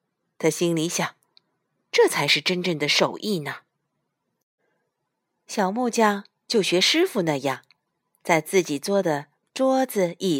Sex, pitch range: female, 170-260 Hz